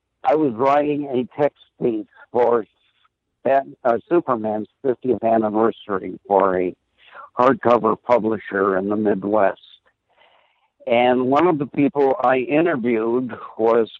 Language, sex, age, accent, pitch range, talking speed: English, male, 60-79, American, 115-145 Hz, 105 wpm